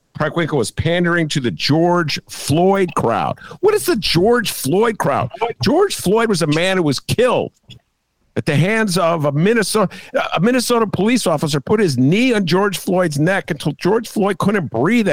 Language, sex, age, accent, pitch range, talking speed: English, male, 50-69, American, 140-210 Hz, 180 wpm